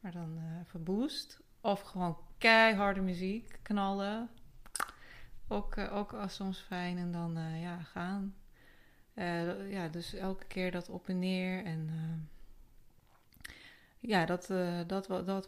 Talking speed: 145 wpm